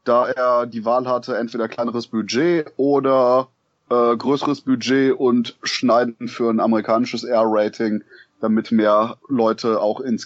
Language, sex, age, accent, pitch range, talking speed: German, male, 20-39, German, 115-155 Hz, 140 wpm